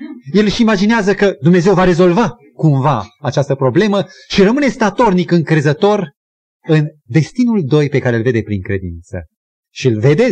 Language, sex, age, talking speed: Romanian, male, 30-49, 150 wpm